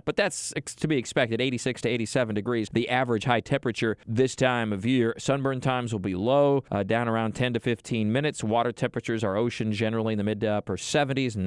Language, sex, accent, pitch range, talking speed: English, male, American, 110-130 Hz, 215 wpm